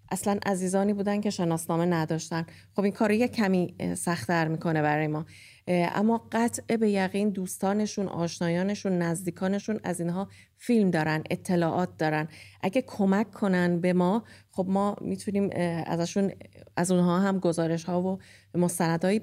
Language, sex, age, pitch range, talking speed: English, female, 30-49, 170-215 Hz, 135 wpm